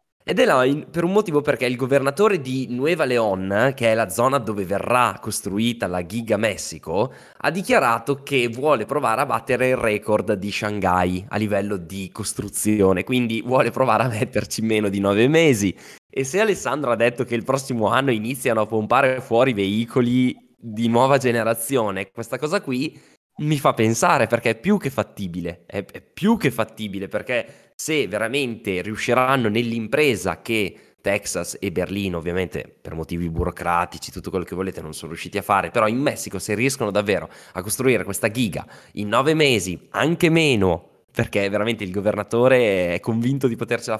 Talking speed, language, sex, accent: 170 wpm, Italian, male, native